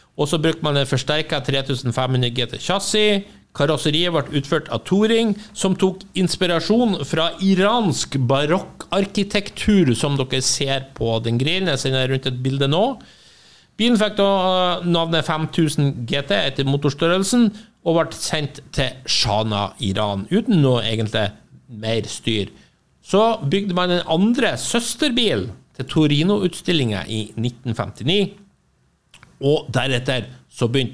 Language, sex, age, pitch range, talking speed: English, male, 50-69, 125-175 Hz, 125 wpm